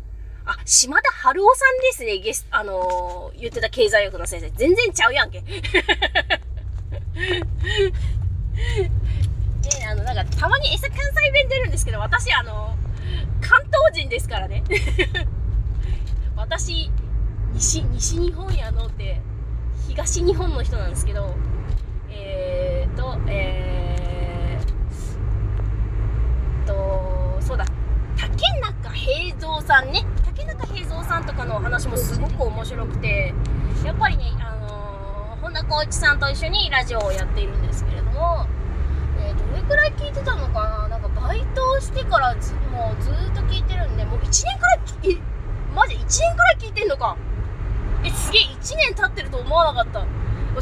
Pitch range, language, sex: 95-130 Hz, Japanese, female